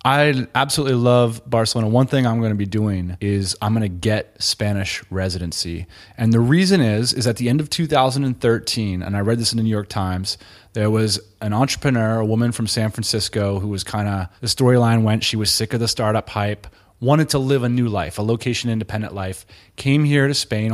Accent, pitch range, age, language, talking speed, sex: American, 105-130 Hz, 30-49, English, 215 wpm, male